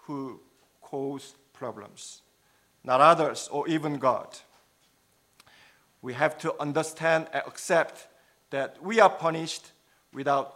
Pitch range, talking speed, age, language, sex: 135-175 Hz, 110 wpm, 50-69, English, male